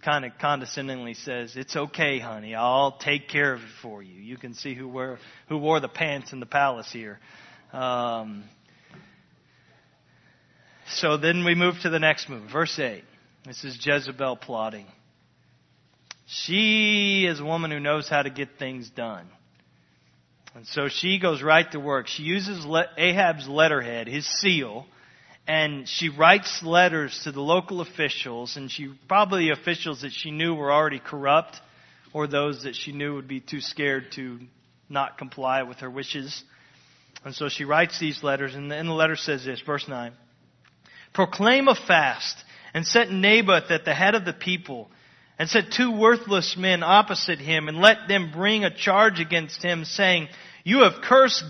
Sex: male